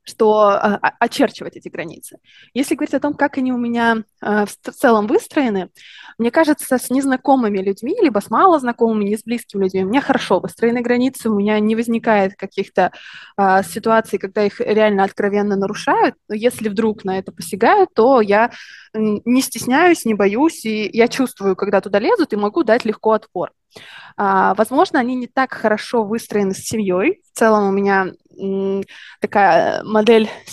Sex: female